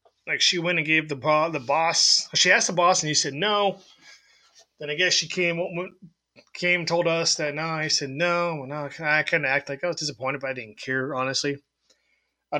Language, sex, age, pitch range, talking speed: English, male, 20-39, 135-180 Hz, 220 wpm